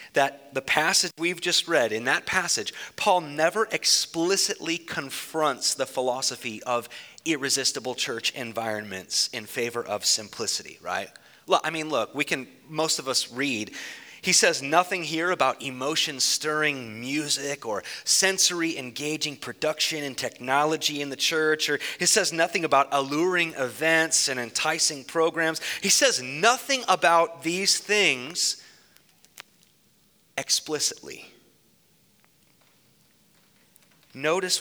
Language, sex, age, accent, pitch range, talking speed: English, male, 30-49, American, 130-165 Hz, 115 wpm